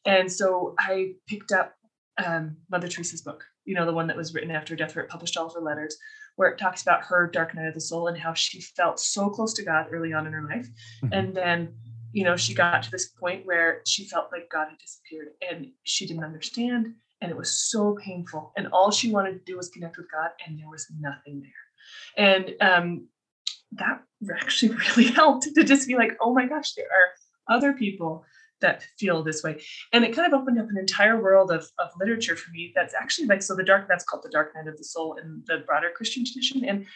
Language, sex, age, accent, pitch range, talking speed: English, female, 20-39, American, 165-220 Hz, 235 wpm